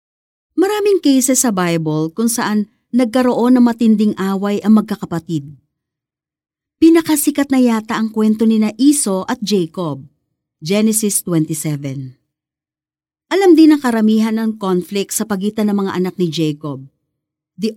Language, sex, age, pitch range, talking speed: Filipino, female, 50-69, 165-250 Hz, 125 wpm